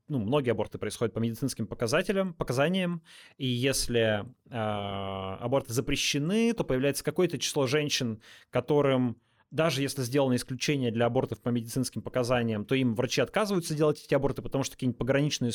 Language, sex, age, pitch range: Russian, male, 20-39, 115-140 Hz